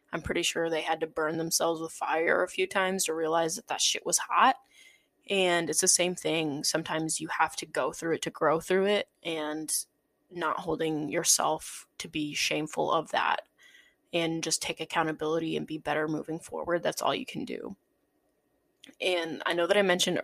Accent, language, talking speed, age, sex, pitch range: American, English, 195 wpm, 20-39, female, 160-205 Hz